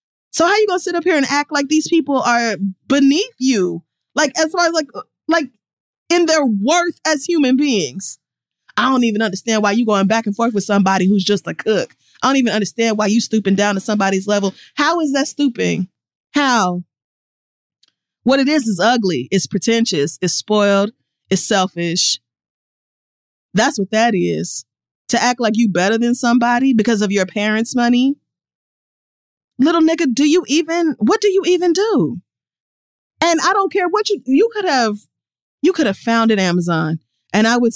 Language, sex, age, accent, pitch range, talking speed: English, female, 20-39, American, 195-265 Hz, 185 wpm